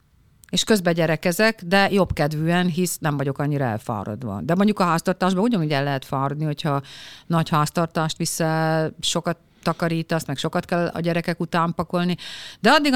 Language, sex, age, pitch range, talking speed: Hungarian, female, 50-69, 155-195 Hz, 155 wpm